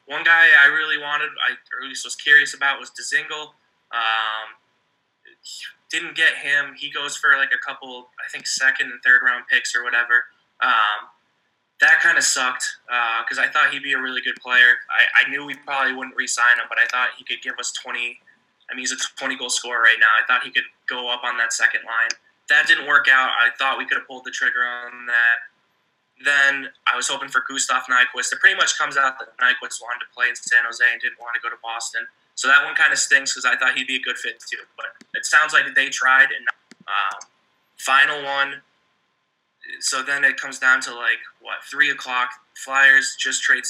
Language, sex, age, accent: English, male, 20-39, American